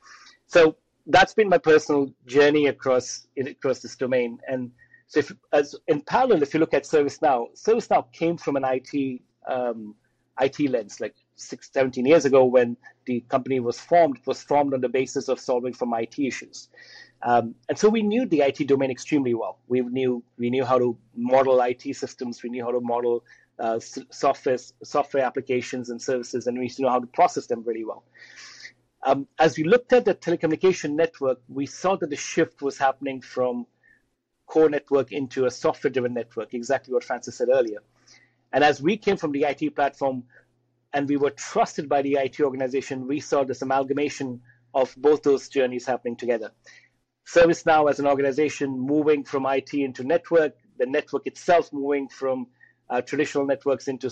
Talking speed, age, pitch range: 180 wpm, 30-49, 125-150 Hz